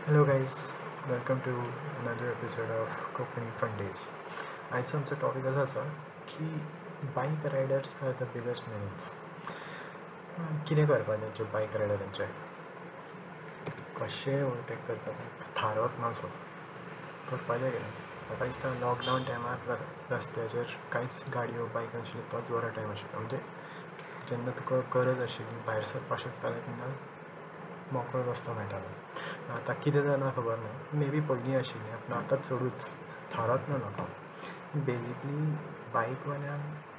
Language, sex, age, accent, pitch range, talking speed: Marathi, male, 20-39, native, 120-145 Hz, 100 wpm